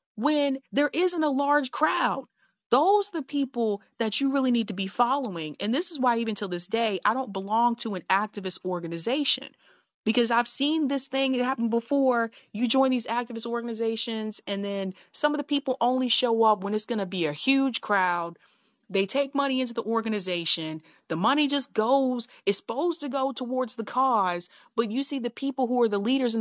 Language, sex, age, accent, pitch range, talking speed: English, female, 30-49, American, 200-265 Hz, 200 wpm